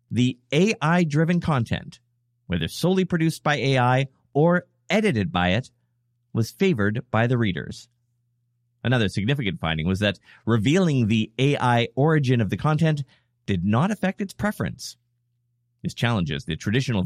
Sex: male